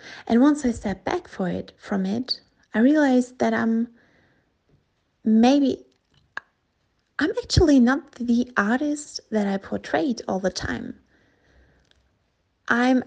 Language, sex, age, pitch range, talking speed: English, female, 20-39, 205-240 Hz, 120 wpm